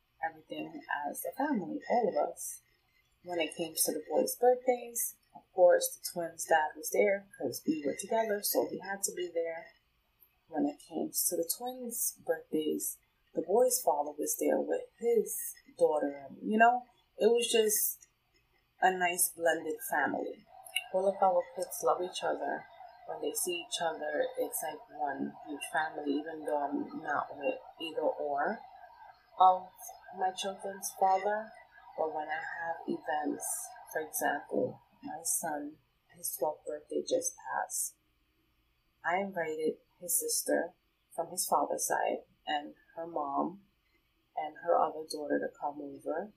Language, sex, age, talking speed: English, female, 20-39, 150 wpm